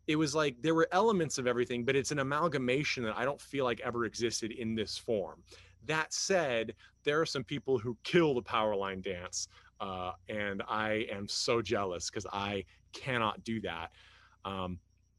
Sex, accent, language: male, American, English